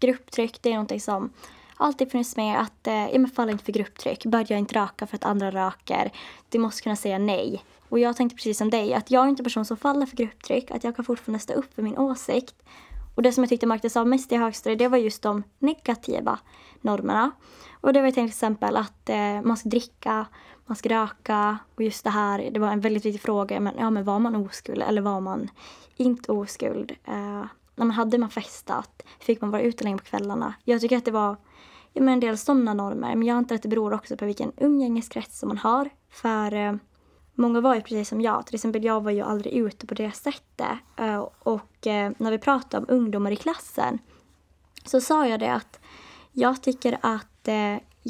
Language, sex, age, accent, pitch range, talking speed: Swedish, female, 20-39, Norwegian, 210-250 Hz, 215 wpm